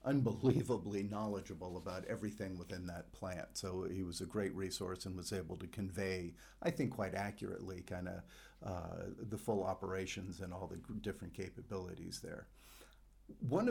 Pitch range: 100-120 Hz